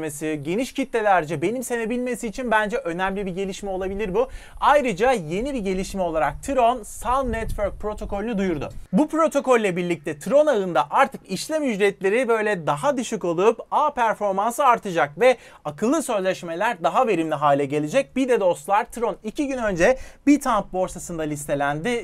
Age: 30-49